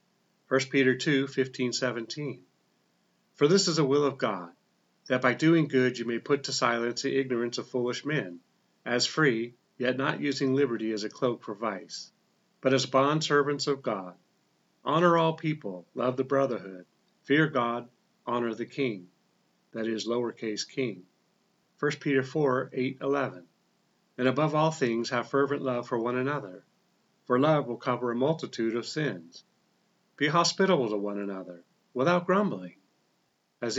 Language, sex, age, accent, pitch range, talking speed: English, male, 40-59, American, 120-155 Hz, 155 wpm